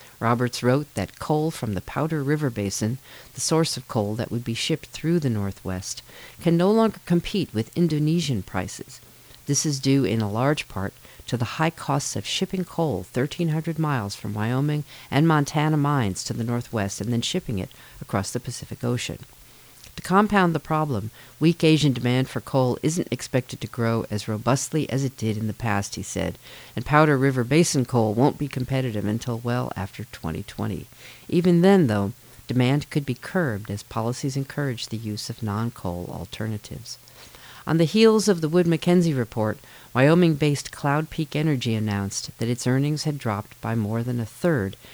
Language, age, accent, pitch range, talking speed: English, 50-69, American, 115-150 Hz, 175 wpm